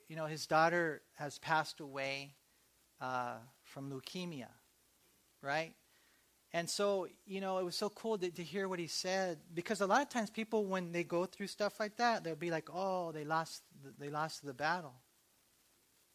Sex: male